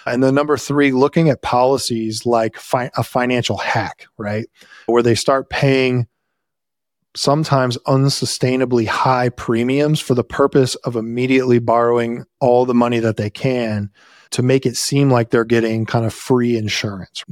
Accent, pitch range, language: American, 115-135 Hz, English